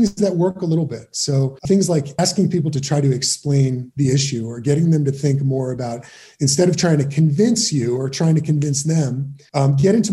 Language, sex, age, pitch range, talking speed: English, male, 30-49, 130-160 Hz, 220 wpm